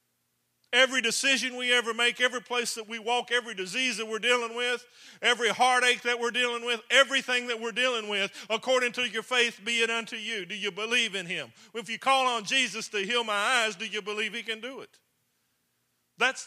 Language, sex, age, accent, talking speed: English, male, 50-69, American, 210 wpm